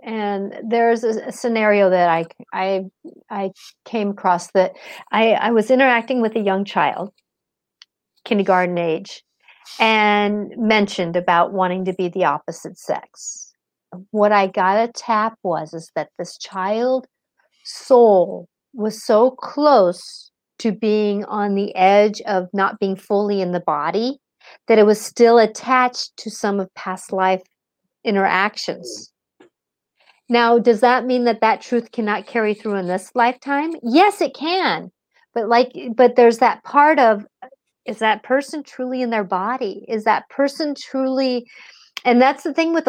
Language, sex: English, female